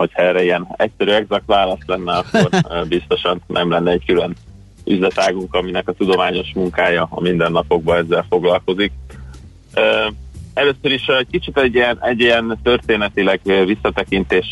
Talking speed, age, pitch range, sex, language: 130 wpm, 30-49, 90-100 Hz, male, Hungarian